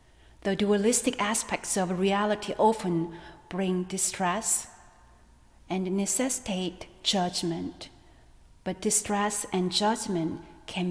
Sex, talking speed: female, 90 wpm